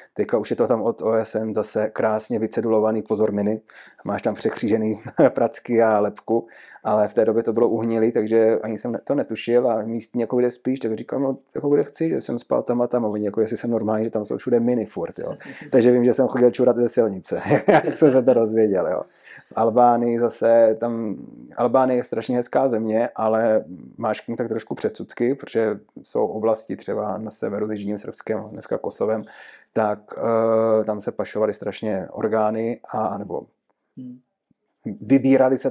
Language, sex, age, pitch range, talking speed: Czech, male, 30-49, 110-120 Hz, 175 wpm